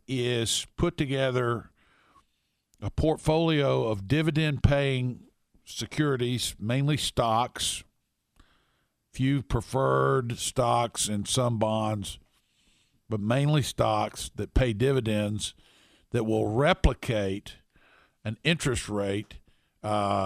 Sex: male